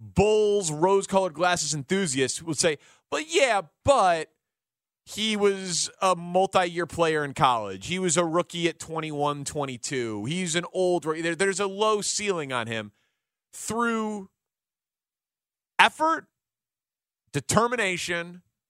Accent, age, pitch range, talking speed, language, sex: American, 30-49, 150-210 Hz, 110 wpm, English, male